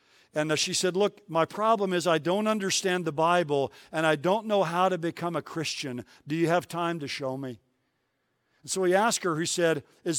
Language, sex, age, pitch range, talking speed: English, male, 50-69, 155-190 Hz, 210 wpm